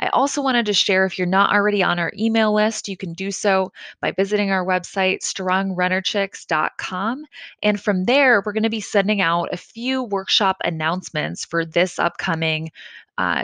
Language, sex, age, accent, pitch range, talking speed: English, female, 20-39, American, 175-210 Hz, 175 wpm